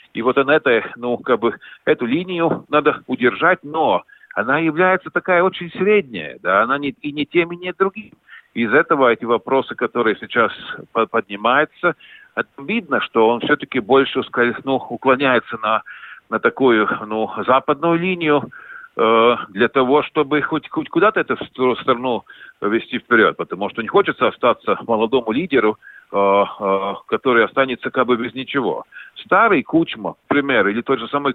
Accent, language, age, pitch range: native, Russian, 50-69, 120-165 Hz